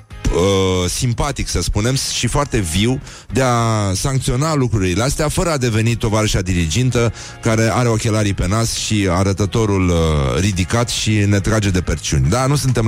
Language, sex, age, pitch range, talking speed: Romanian, male, 30-49, 95-125 Hz, 150 wpm